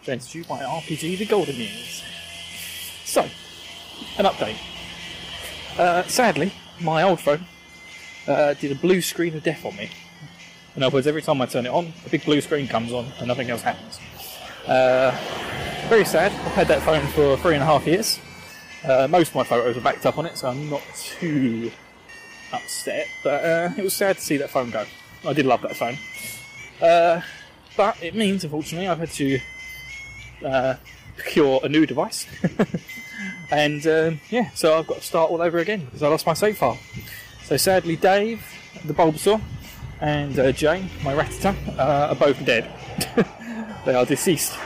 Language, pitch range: English, 130-175 Hz